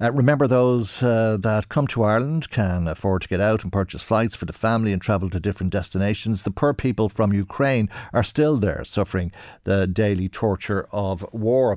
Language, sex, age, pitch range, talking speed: English, male, 50-69, 100-115 Hz, 195 wpm